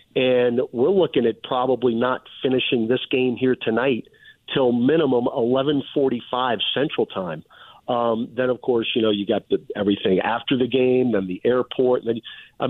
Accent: American